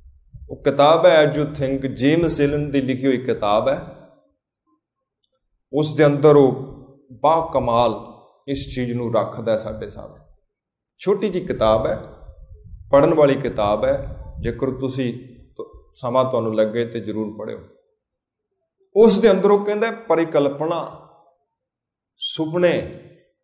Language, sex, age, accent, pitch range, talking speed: Hindi, male, 30-49, native, 125-185 Hz, 105 wpm